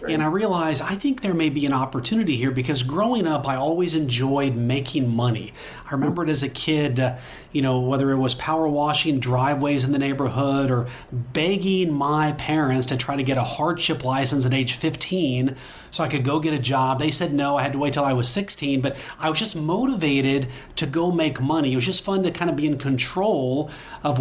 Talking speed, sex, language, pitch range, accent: 220 wpm, male, English, 135-160 Hz, American